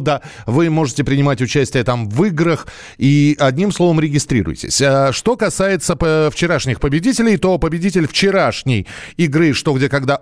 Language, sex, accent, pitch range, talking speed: Russian, male, native, 135-185 Hz, 140 wpm